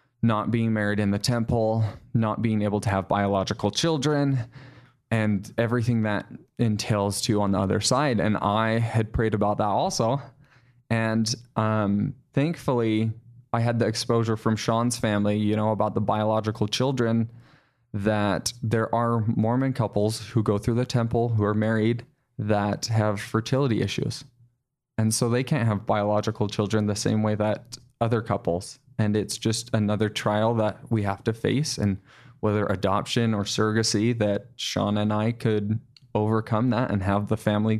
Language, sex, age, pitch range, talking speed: English, male, 20-39, 105-125 Hz, 160 wpm